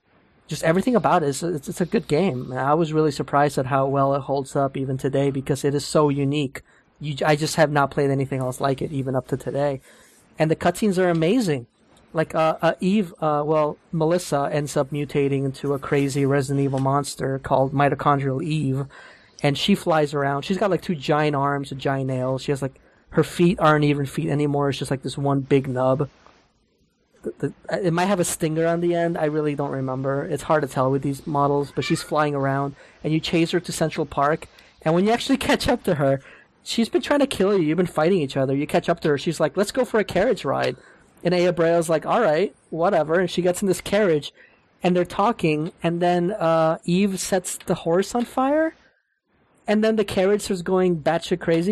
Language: English